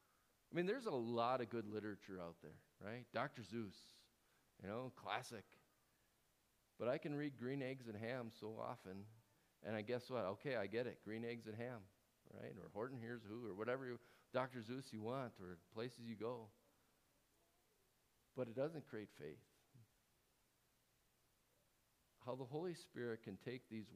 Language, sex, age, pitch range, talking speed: English, male, 50-69, 100-125 Hz, 165 wpm